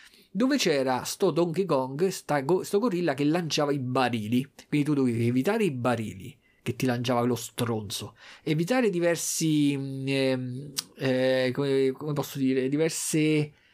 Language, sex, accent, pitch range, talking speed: Italian, male, native, 130-175 Hz, 130 wpm